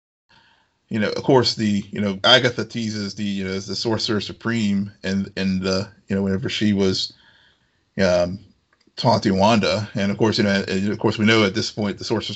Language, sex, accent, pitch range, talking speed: English, male, American, 100-115 Hz, 200 wpm